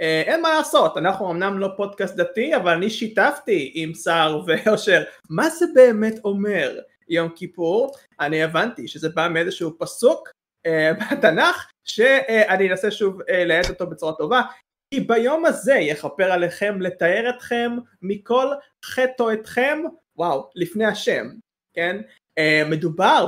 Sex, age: male, 20-39